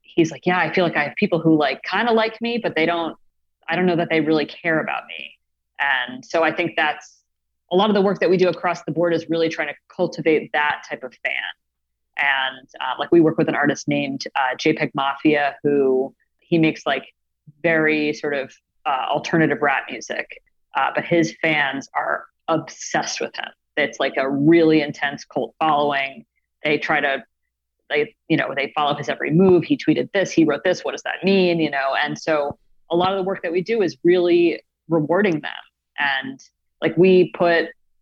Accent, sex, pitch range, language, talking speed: American, female, 145-175 Hz, English, 205 wpm